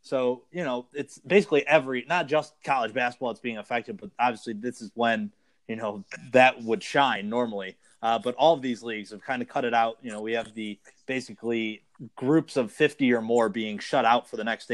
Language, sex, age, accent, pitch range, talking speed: English, male, 20-39, American, 110-130 Hz, 215 wpm